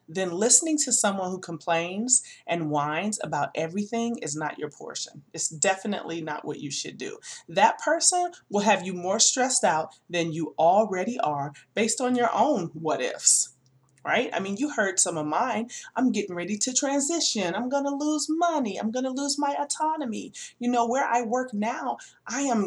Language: English